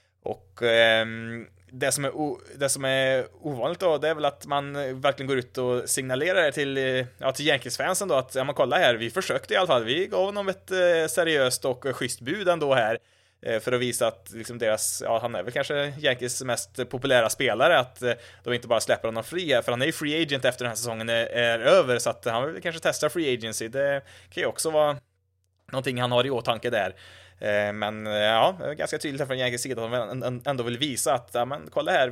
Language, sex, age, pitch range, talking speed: Swedish, male, 20-39, 115-140 Hz, 220 wpm